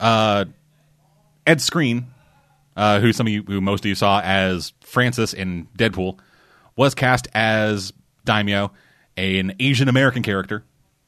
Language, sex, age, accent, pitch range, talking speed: English, male, 30-49, American, 100-130 Hz, 135 wpm